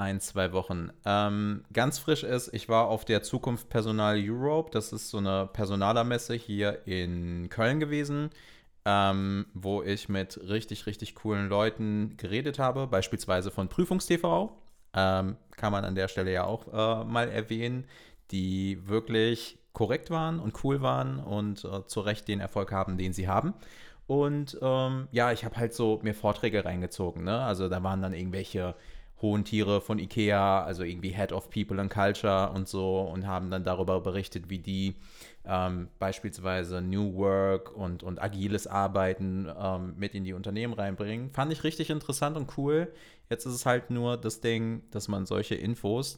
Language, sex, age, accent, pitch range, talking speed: German, male, 30-49, German, 95-115 Hz, 170 wpm